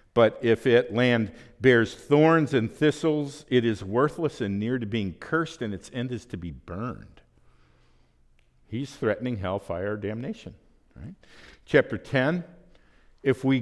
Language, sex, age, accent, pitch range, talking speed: English, male, 50-69, American, 100-145 Hz, 140 wpm